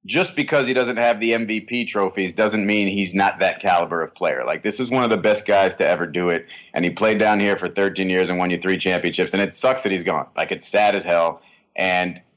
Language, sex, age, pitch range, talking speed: English, male, 30-49, 95-120 Hz, 255 wpm